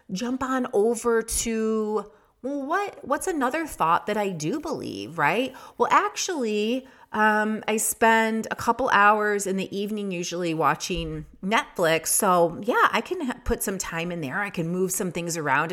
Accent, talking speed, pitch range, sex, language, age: American, 165 wpm, 145-215 Hz, female, English, 30-49